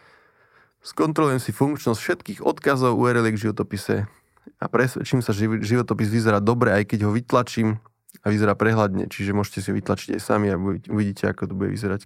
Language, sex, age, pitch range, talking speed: Slovak, male, 20-39, 105-125 Hz, 175 wpm